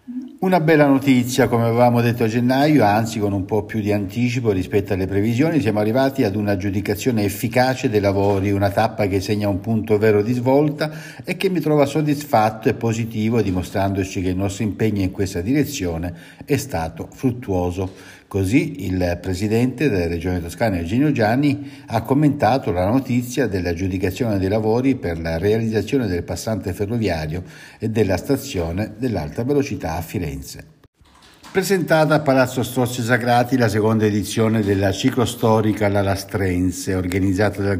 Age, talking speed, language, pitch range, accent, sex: 60-79, 150 wpm, Italian, 95-125 Hz, native, male